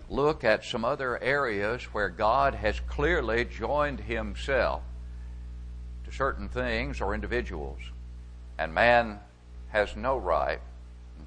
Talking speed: 115 wpm